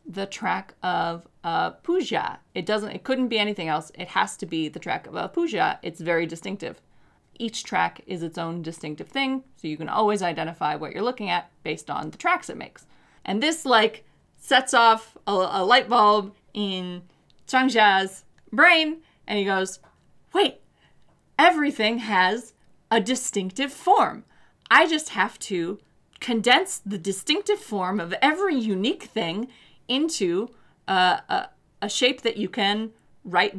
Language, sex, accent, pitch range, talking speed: English, female, American, 185-260 Hz, 155 wpm